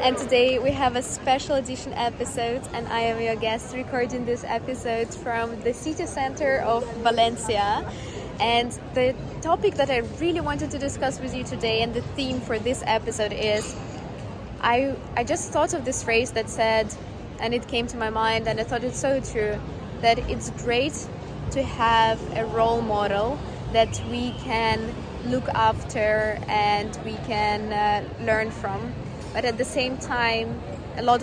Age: 20-39